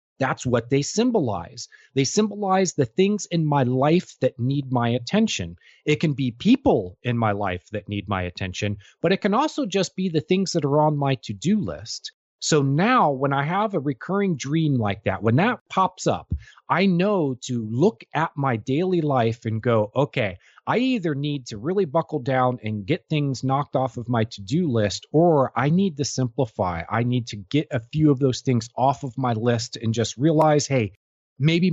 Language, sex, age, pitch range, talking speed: English, male, 30-49, 115-160 Hz, 195 wpm